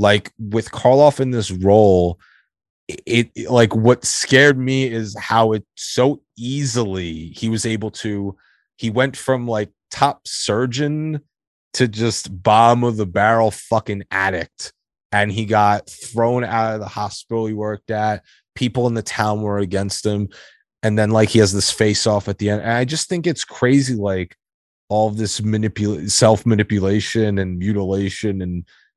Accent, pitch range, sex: American, 100-125 Hz, male